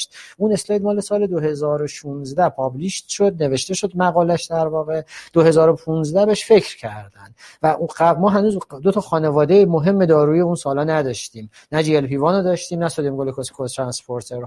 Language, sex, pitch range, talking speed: Persian, male, 140-185 Hz, 135 wpm